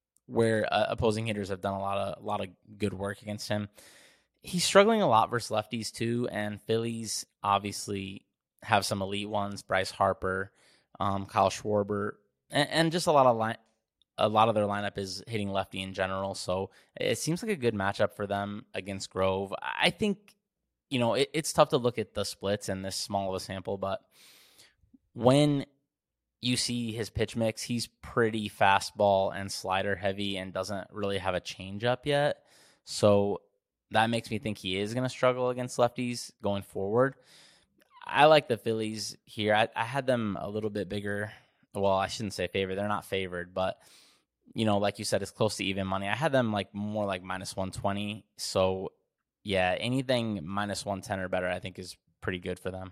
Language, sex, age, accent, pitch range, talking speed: English, male, 20-39, American, 95-115 Hz, 195 wpm